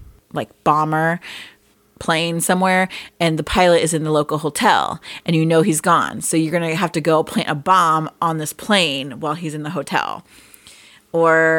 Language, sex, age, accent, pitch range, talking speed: English, female, 30-49, American, 160-195 Hz, 185 wpm